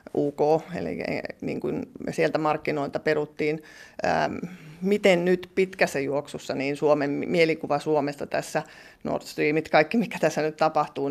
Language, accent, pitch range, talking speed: Finnish, native, 145-165 Hz, 135 wpm